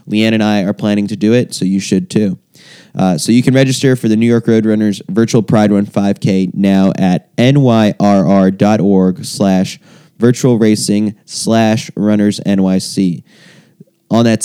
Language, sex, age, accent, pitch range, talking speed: English, male, 20-39, American, 100-115 Hz, 145 wpm